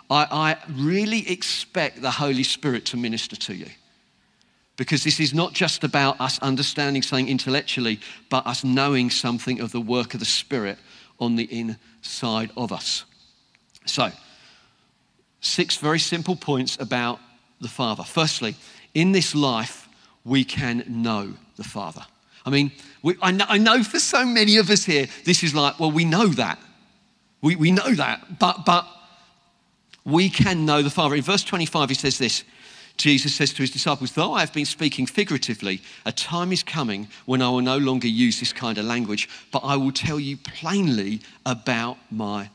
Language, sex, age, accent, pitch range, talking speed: English, male, 40-59, British, 130-190 Hz, 175 wpm